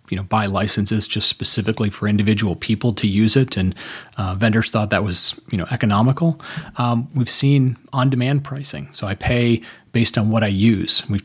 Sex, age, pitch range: male, 30-49, 105-125 Hz